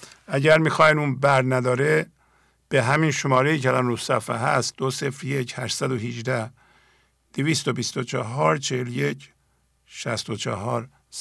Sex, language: male, English